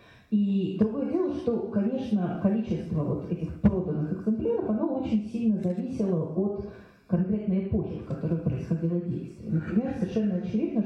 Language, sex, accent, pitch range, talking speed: Russian, female, native, 170-215 Hz, 135 wpm